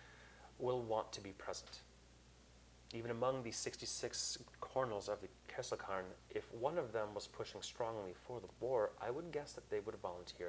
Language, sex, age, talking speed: English, male, 30-49, 170 wpm